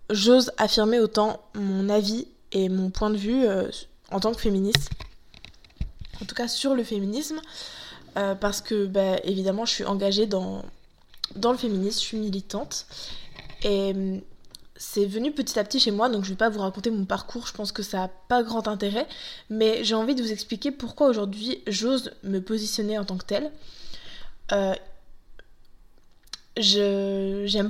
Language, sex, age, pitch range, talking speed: French, female, 20-39, 200-240 Hz, 170 wpm